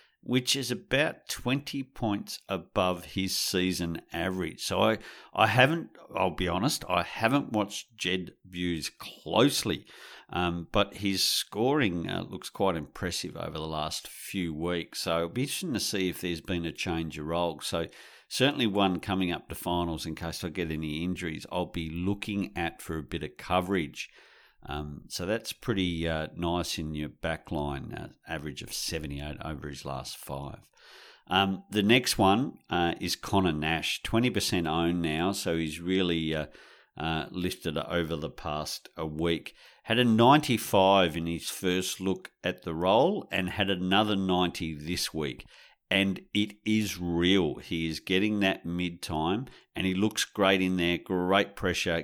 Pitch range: 80-95 Hz